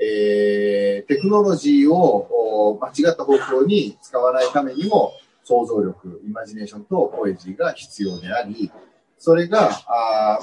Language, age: Japanese, 40-59